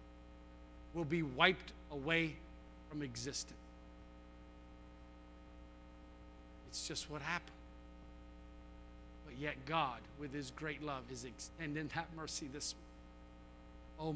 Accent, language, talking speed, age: American, English, 100 wpm, 50-69